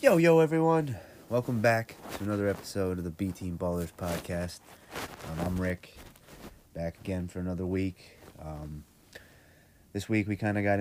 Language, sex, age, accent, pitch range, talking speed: English, male, 30-49, American, 85-100 Hz, 155 wpm